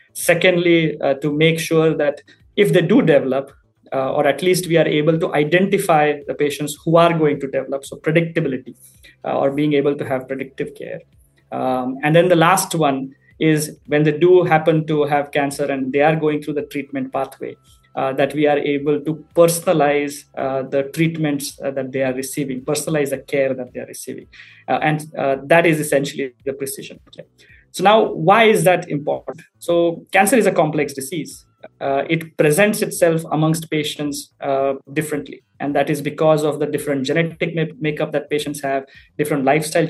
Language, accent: English, Indian